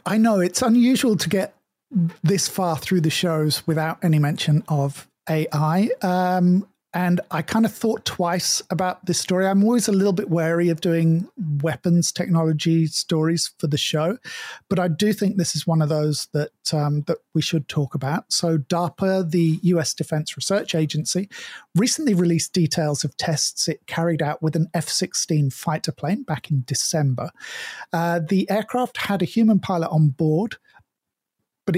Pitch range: 160-195 Hz